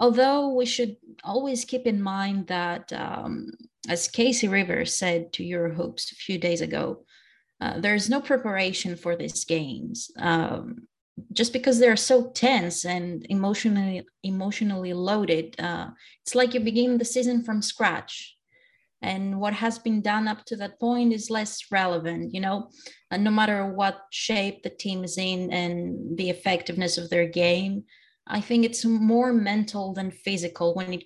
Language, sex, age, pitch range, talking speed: English, female, 20-39, 180-230 Hz, 160 wpm